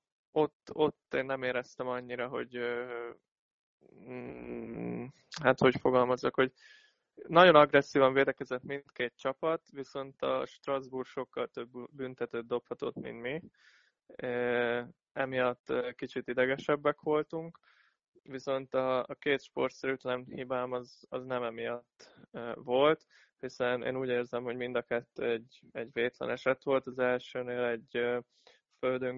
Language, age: Hungarian, 20-39